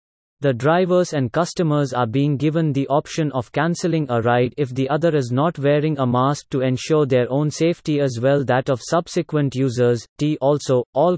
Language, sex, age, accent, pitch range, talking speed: English, male, 30-49, Indian, 125-155 Hz, 190 wpm